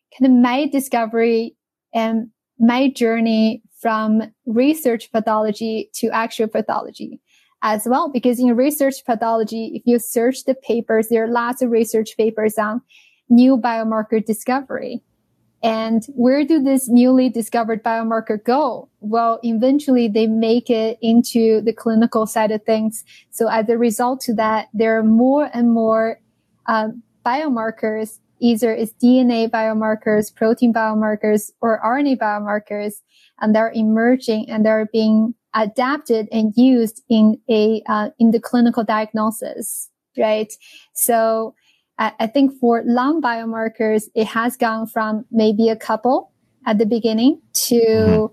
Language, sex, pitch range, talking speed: English, female, 220-245 Hz, 135 wpm